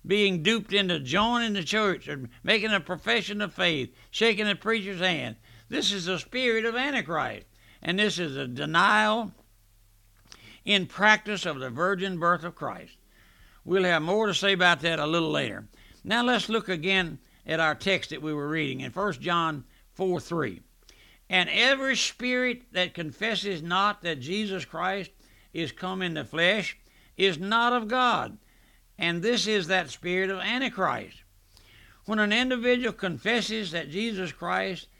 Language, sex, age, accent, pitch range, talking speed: English, male, 60-79, American, 155-210 Hz, 160 wpm